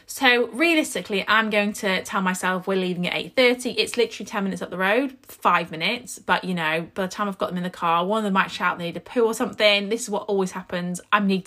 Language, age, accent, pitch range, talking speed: English, 20-39, British, 185-245 Hz, 260 wpm